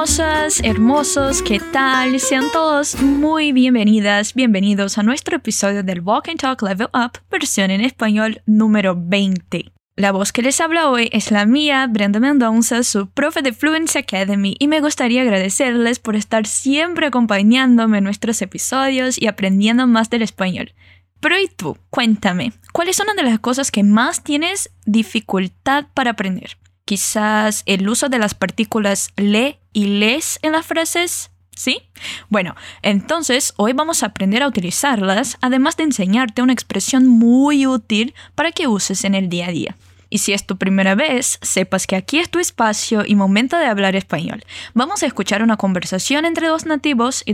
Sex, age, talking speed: female, 10-29, 165 wpm